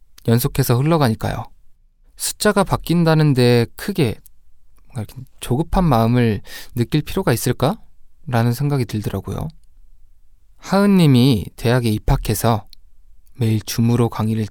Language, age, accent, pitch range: Korean, 20-39, native, 105-145 Hz